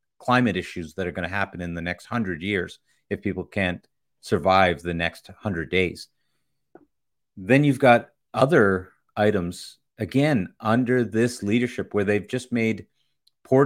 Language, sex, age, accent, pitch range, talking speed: English, male, 30-49, American, 100-130 Hz, 150 wpm